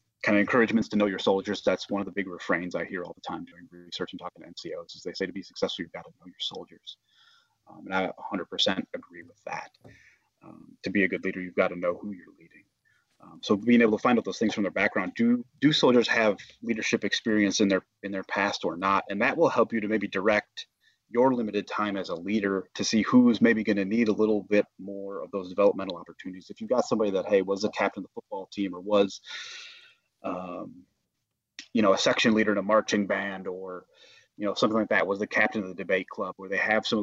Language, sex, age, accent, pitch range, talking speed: English, male, 30-49, American, 95-115 Hz, 245 wpm